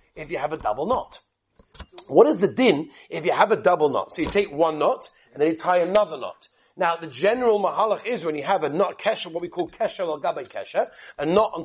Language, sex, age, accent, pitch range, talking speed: English, male, 40-59, British, 200-280 Hz, 245 wpm